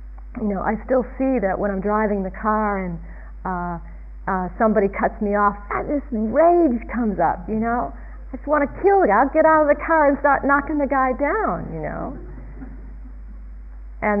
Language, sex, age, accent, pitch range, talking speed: English, female, 50-69, American, 175-240 Hz, 200 wpm